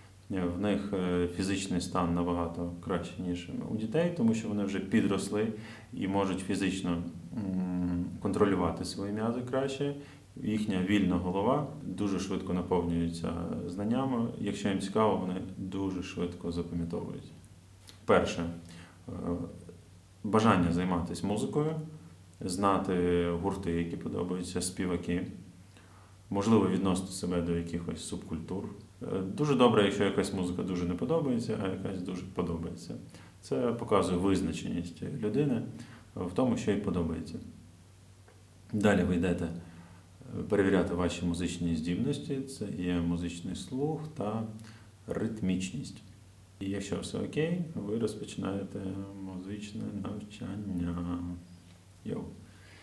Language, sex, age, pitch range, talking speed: Ukrainian, male, 30-49, 90-105 Hz, 105 wpm